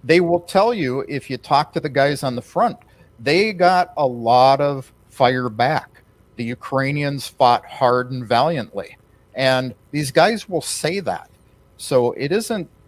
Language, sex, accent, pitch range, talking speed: English, male, American, 110-150 Hz, 165 wpm